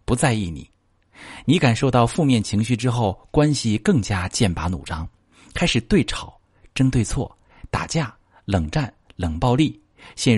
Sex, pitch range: male, 90-125 Hz